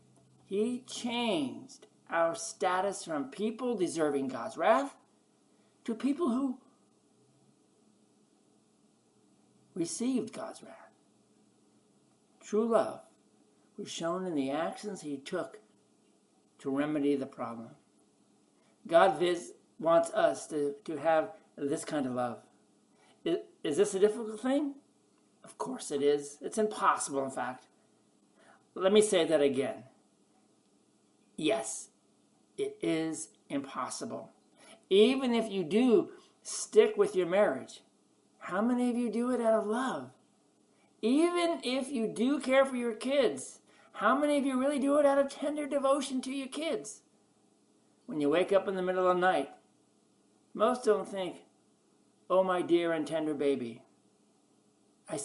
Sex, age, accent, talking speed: male, 60-79, American, 130 wpm